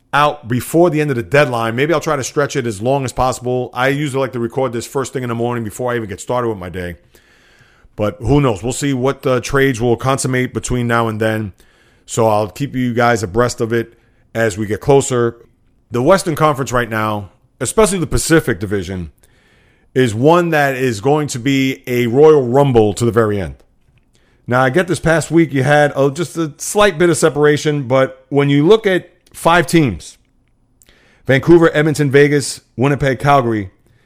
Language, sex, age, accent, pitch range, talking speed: English, male, 40-59, American, 115-145 Hz, 195 wpm